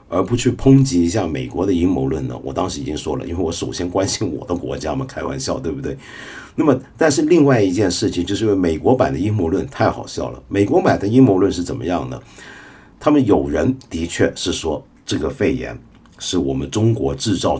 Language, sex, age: Chinese, male, 50-69